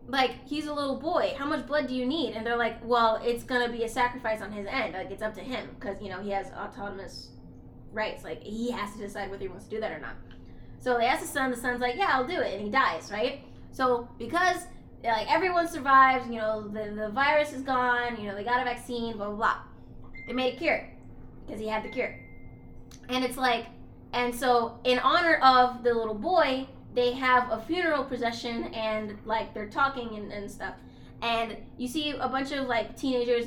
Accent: American